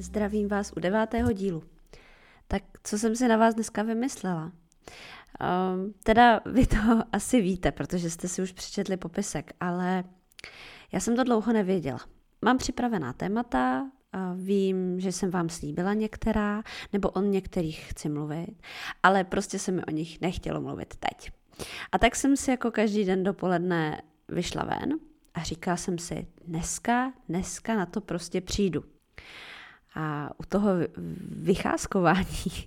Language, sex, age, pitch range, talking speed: Czech, female, 20-39, 175-220 Hz, 145 wpm